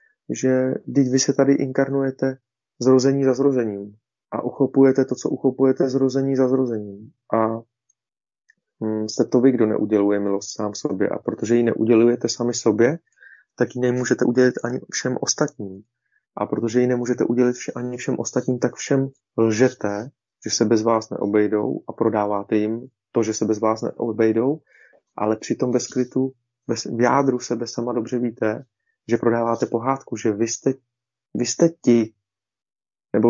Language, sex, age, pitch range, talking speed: Czech, male, 30-49, 110-130 Hz, 150 wpm